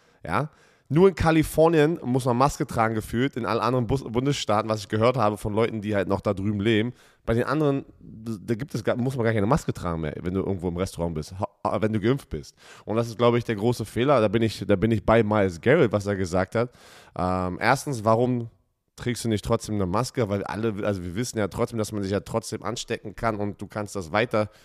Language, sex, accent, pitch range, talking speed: German, male, German, 105-135 Hz, 235 wpm